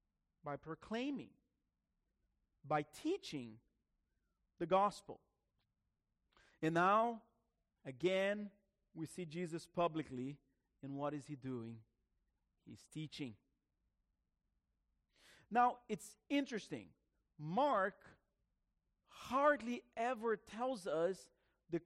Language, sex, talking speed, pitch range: English, male, 80 wpm, 145-205 Hz